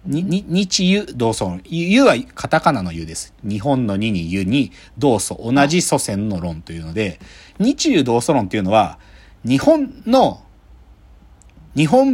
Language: Japanese